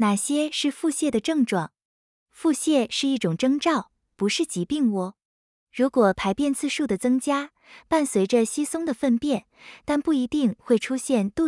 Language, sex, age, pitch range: Chinese, female, 20-39, 200-285 Hz